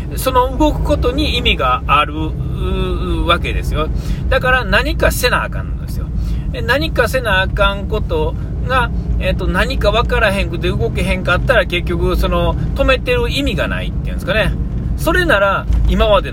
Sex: male